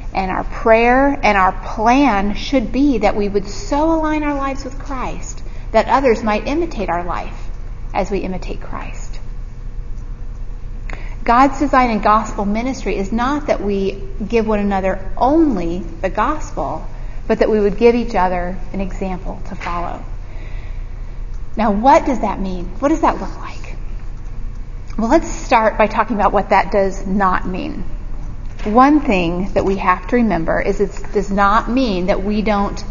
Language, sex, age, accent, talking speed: English, female, 30-49, American, 160 wpm